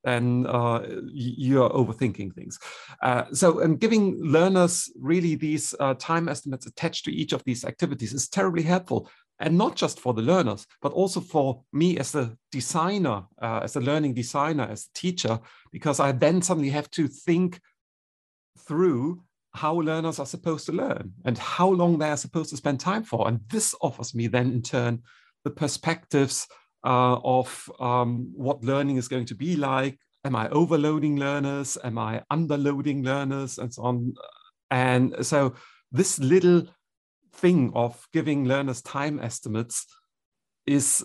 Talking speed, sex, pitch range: 160 wpm, male, 125-165 Hz